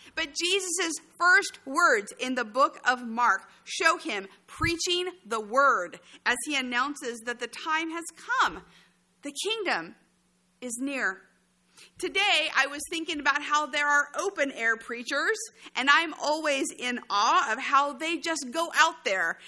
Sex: female